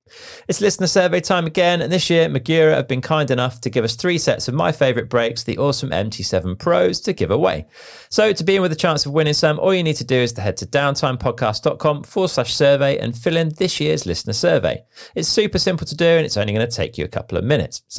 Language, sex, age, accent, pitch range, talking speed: English, male, 40-59, British, 120-165 Hz, 255 wpm